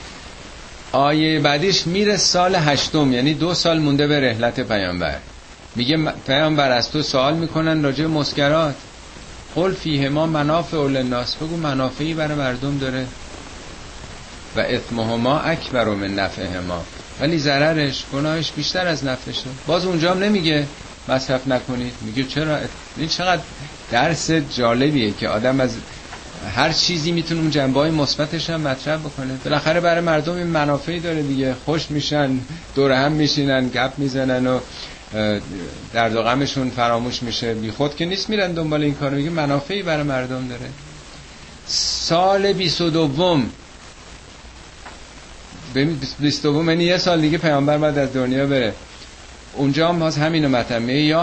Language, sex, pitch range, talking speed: Persian, male, 125-160 Hz, 140 wpm